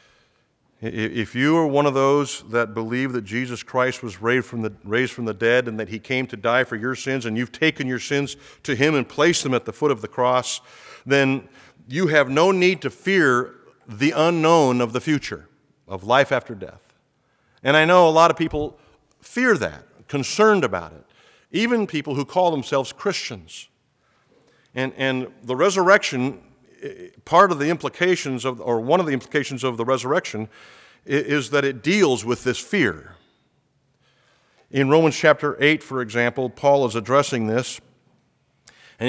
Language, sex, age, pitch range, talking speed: English, male, 50-69, 125-155 Hz, 175 wpm